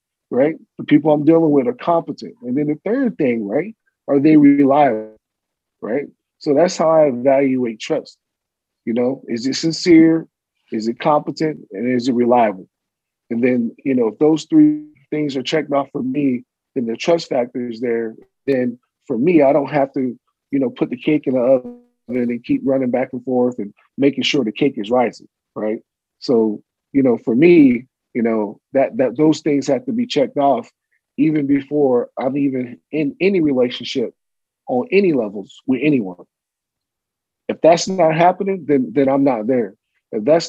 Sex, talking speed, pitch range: male, 180 wpm, 130-160 Hz